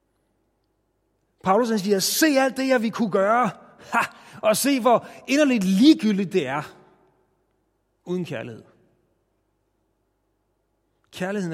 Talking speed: 110 wpm